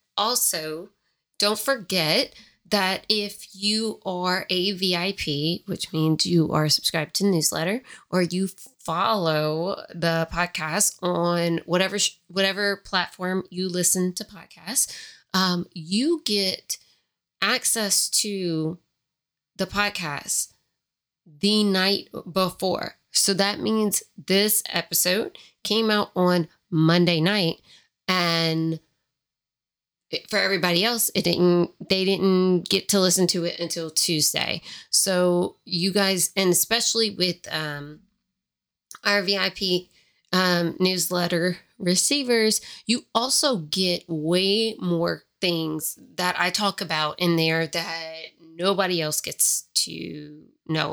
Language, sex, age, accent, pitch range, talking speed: English, female, 20-39, American, 170-200 Hz, 110 wpm